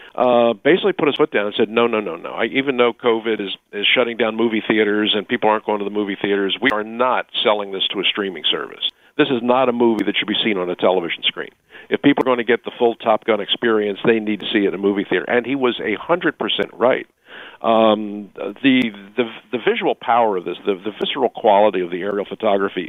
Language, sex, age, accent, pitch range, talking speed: English, male, 50-69, American, 105-125 Hz, 245 wpm